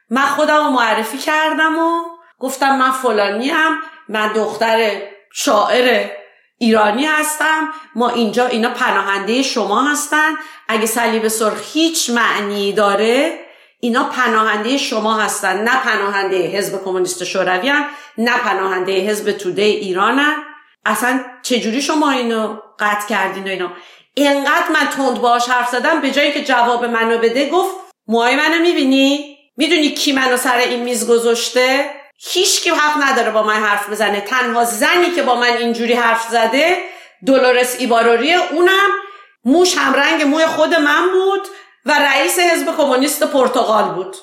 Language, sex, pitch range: Persian, female, 220-300 Hz